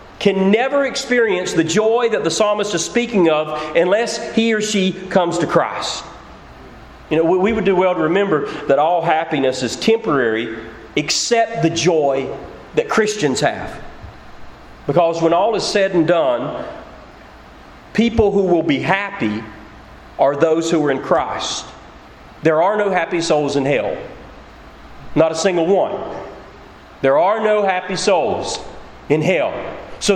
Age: 40-59